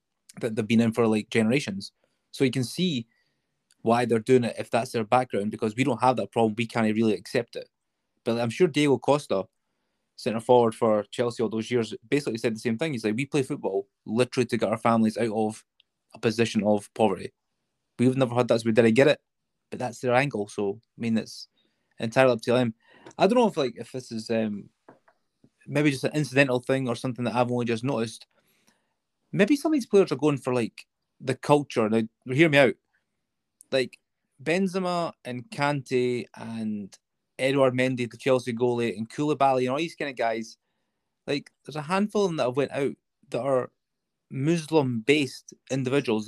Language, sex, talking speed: English, male, 195 wpm